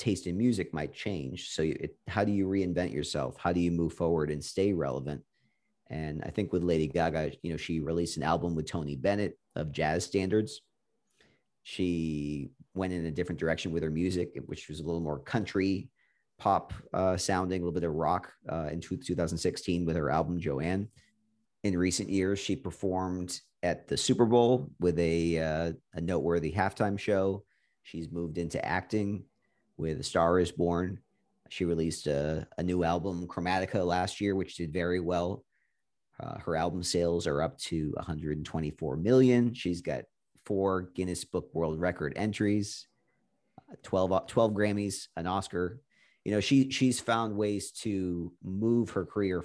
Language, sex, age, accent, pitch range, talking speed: English, male, 40-59, American, 85-100 Hz, 165 wpm